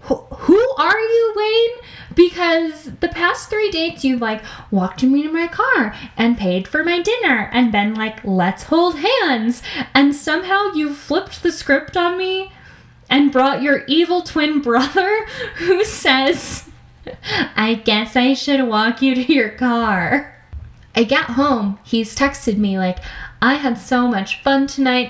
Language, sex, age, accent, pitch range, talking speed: English, female, 10-29, American, 215-310 Hz, 155 wpm